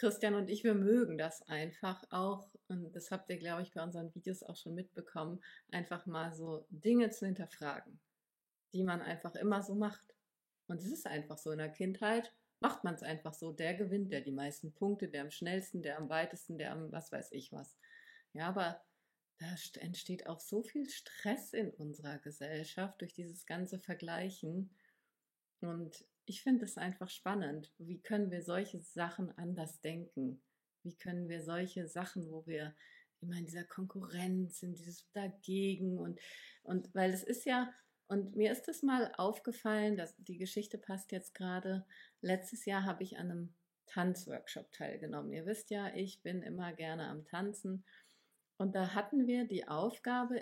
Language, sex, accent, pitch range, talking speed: German, female, German, 170-205 Hz, 175 wpm